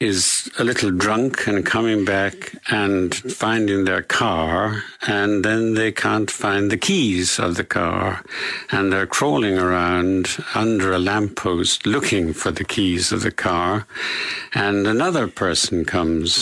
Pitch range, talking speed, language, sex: 95-120 Hz, 145 wpm, English, male